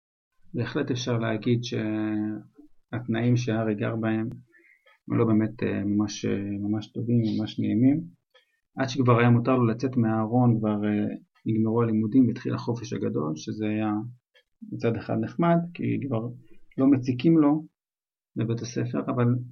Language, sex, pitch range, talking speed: Hebrew, male, 110-135 Hz, 120 wpm